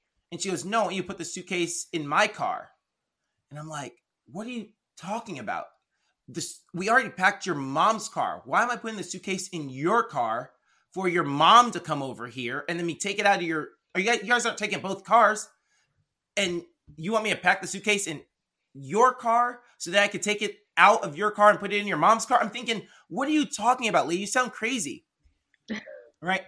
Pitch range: 165-220 Hz